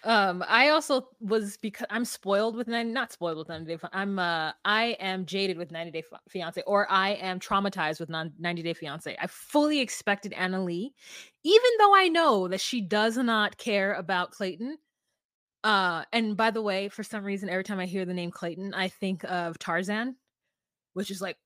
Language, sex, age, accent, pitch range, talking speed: English, female, 20-39, American, 185-250 Hz, 200 wpm